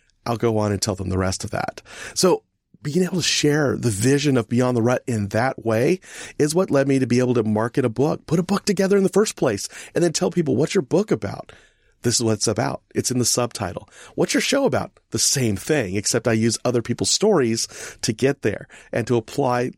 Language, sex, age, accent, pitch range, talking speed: English, male, 40-59, American, 110-140 Hz, 240 wpm